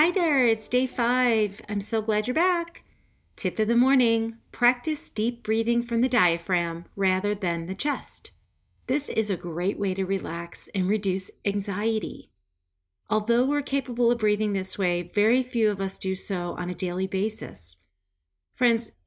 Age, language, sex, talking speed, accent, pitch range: 40-59, English, female, 165 wpm, American, 180-235 Hz